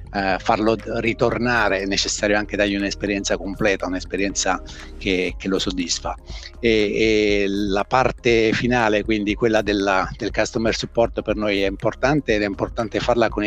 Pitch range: 95-120 Hz